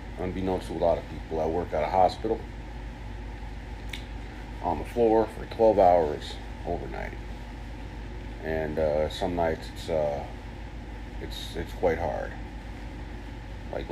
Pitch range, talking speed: 75-95 Hz, 125 wpm